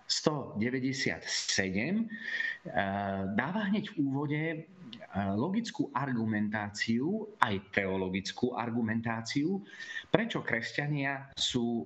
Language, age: Slovak, 30-49